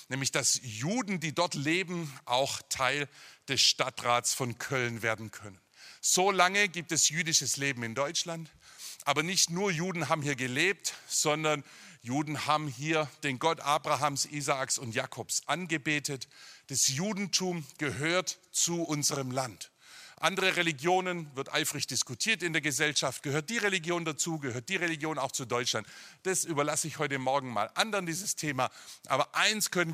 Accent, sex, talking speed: German, male, 150 wpm